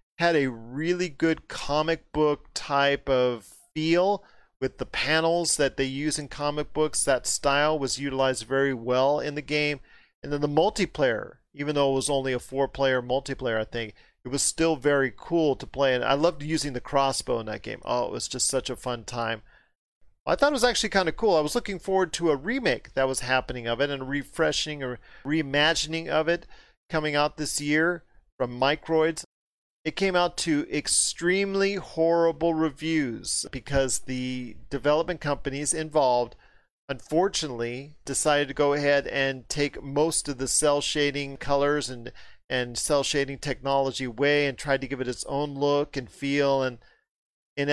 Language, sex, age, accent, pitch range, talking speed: English, male, 40-59, American, 135-155 Hz, 175 wpm